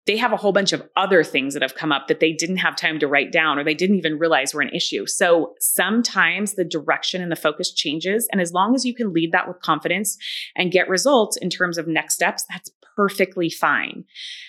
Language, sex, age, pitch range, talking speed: English, female, 30-49, 165-210 Hz, 235 wpm